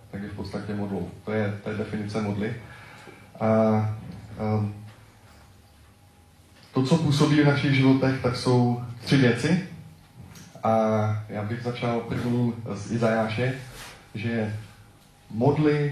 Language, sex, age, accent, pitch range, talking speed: Czech, male, 20-39, native, 105-120 Hz, 110 wpm